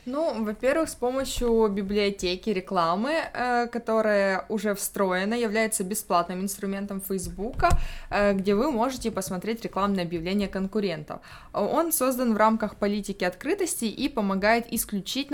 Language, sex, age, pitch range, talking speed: Russian, female, 20-39, 190-235 Hz, 115 wpm